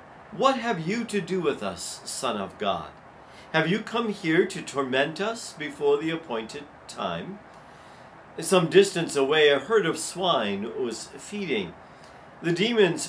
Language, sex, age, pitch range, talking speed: English, male, 50-69, 140-200 Hz, 145 wpm